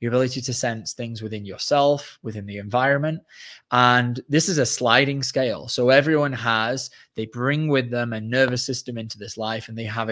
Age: 20-39